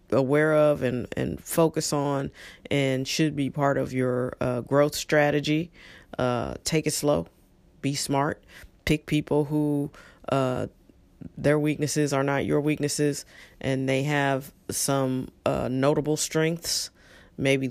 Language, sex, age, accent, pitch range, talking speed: English, female, 40-59, American, 125-150 Hz, 130 wpm